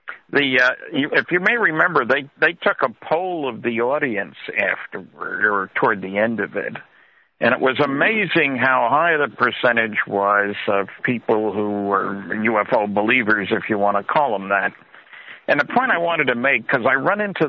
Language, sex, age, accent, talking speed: English, male, 60-79, American, 185 wpm